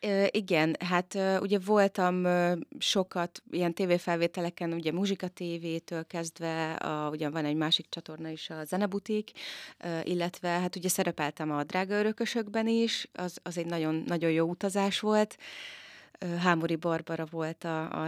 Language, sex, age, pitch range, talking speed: Hungarian, female, 30-49, 160-190 Hz, 135 wpm